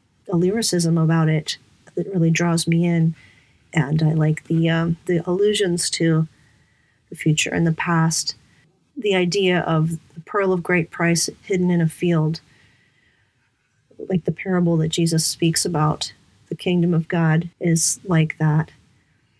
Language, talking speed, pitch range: English, 145 wpm, 160-185 Hz